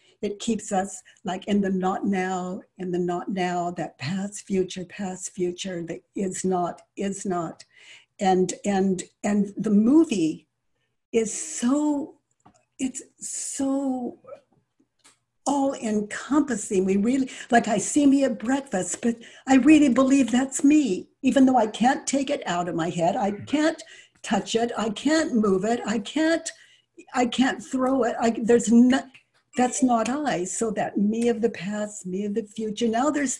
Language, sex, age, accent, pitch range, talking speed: English, female, 60-79, American, 190-270 Hz, 160 wpm